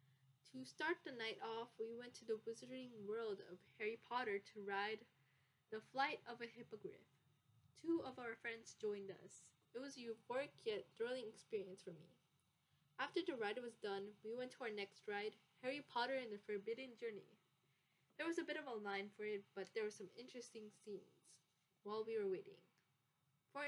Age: 10-29